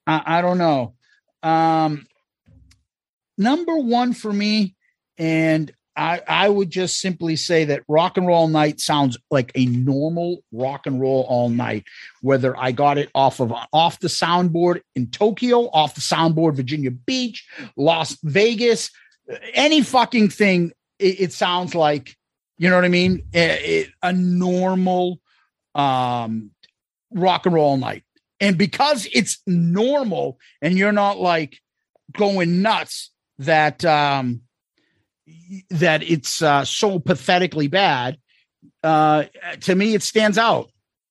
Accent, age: American, 50-69